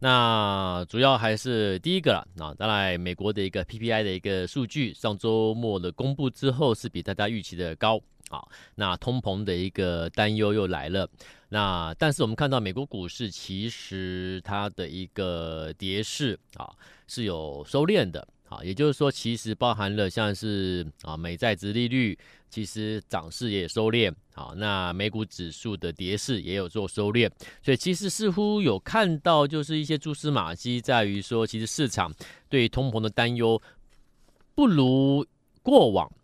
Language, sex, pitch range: Chinese, male, 95-125 Hz